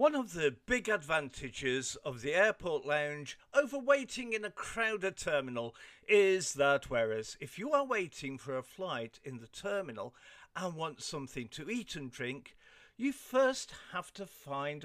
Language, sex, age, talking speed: English, male, 50-69, 160 wpm